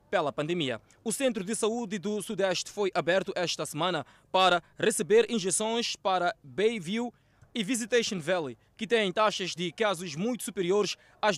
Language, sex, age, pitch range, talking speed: Portuguese, male, 20-39, 185-230 Hz, 150 wpm